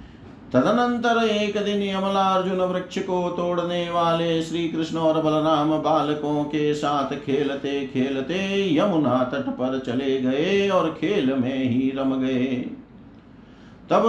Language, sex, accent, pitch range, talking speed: Hindi, male, native, 145-190 Hz, 125 wpm